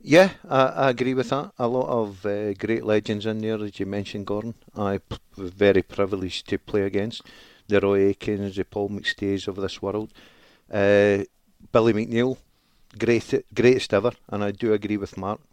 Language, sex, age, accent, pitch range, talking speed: English, male, 50-69, British, 100-125 Hz, 180 wpm